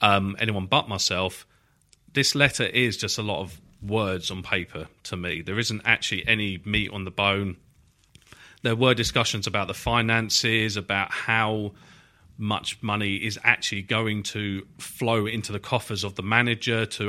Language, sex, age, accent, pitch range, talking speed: English, male, 40-59, British, 95-115 Hz, 160 wpm